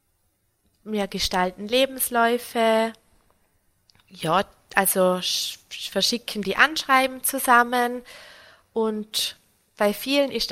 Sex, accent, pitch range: female, German, 190-245 Hz